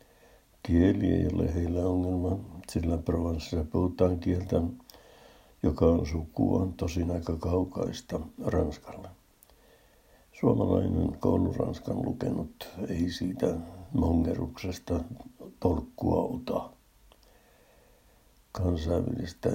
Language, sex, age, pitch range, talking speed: Finnish, male, 60-79, 85-95 Hz, 80 wpm